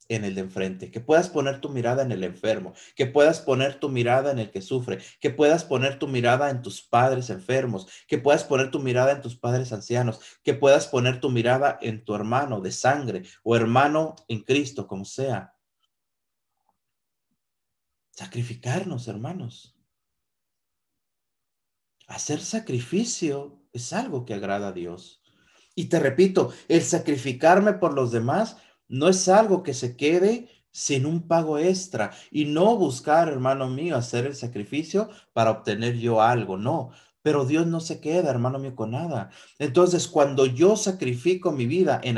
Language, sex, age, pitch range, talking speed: Spanish, male, 50-69, 120-165 Hz, 160 wpm